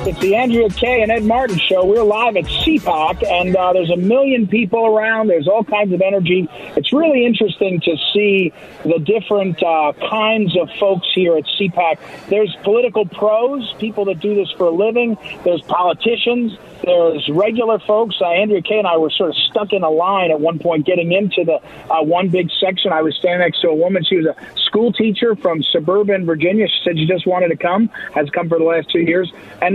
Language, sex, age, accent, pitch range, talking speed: English, male, 50-69, American, 170-215 Hz, 210 wpm